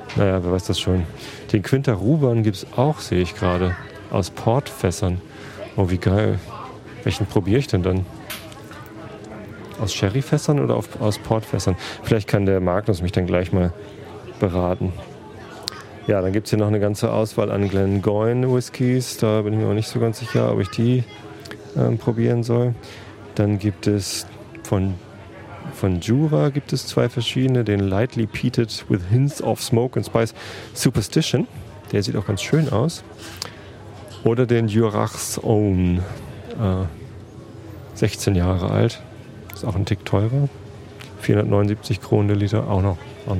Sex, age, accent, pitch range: male, 30-49, German, 100-115 Hz